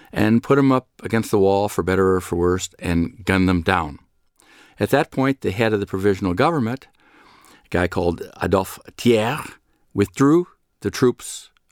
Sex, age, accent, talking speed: male, 50-69, American, 170 wpm